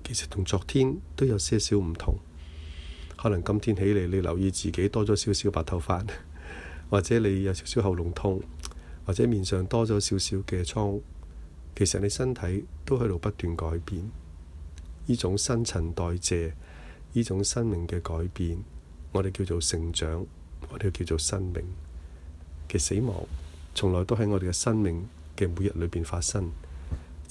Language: Chinese